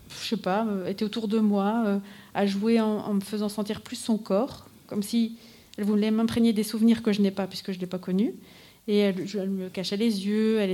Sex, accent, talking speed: female, French, 245 wpm